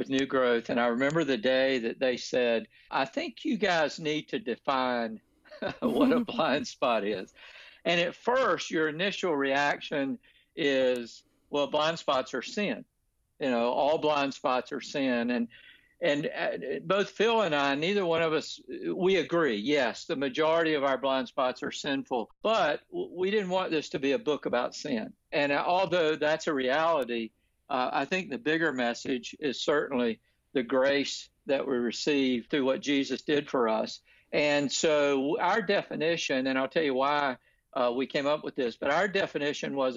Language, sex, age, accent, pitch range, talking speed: English, male, 60-79, American, 130-165 Hz, 175 wpm